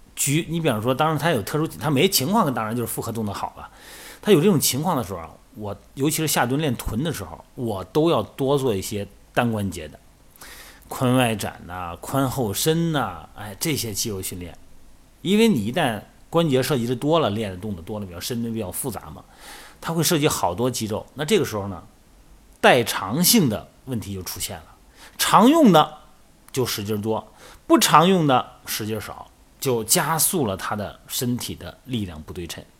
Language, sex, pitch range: Chinese, male, 100-155 Hz